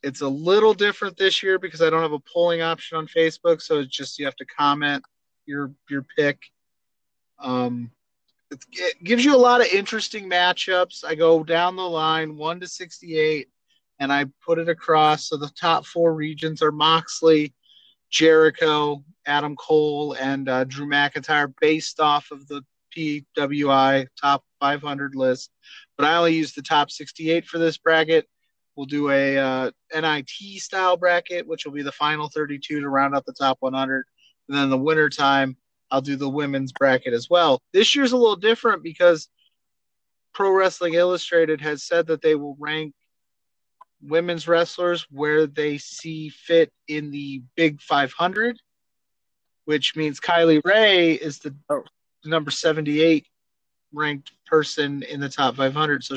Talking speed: 160 wpm